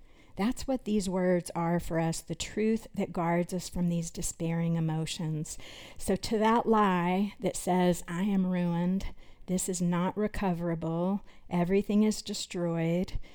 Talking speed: 145 wpm